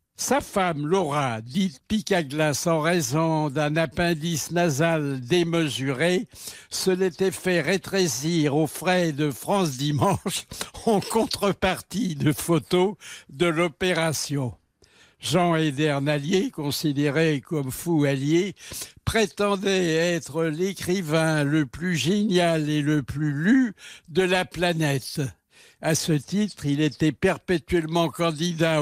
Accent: French